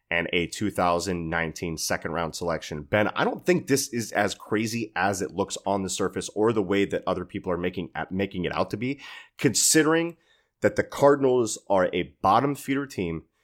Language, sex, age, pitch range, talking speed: English, male, 30-49, 85-110 Hz, 190 wpm